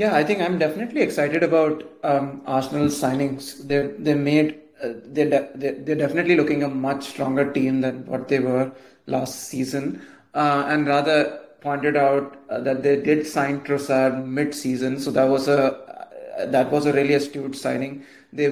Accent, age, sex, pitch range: Indian, 30-49, male, 135-155 Hz